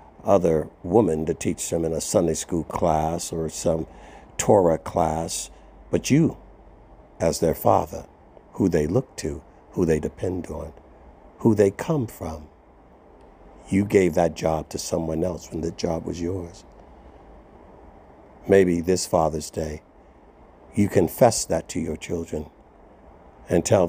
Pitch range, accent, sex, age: 75-95 Hz, American, male, 60-79